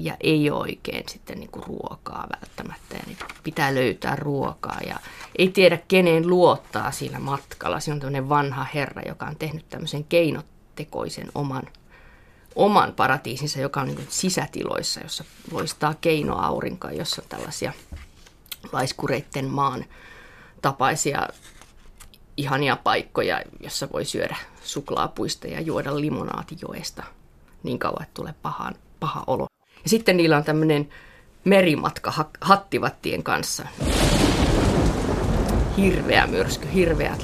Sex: female